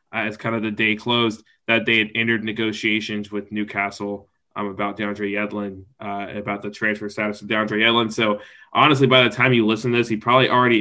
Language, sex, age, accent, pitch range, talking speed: English, male, 20-39, American, 105-125 Hz, 210 wpm